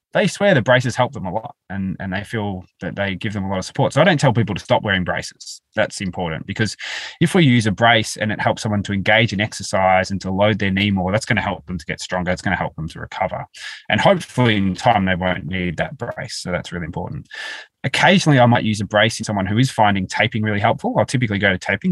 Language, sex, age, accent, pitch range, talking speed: English, male, 20-39, Australian, 90-120 Hz, 270 wpm